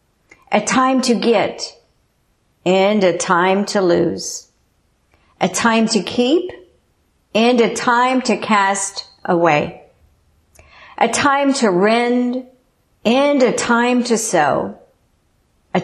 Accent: American